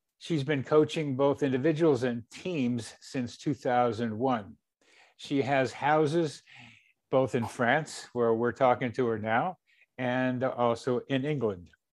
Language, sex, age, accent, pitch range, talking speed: English, male, 60-79, American, 120-140 Hz, 125 wpm